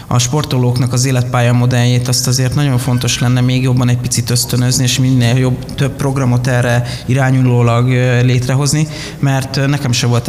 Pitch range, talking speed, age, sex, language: 120-140 Hz, 150 wpm, 20-39, male, Hungarian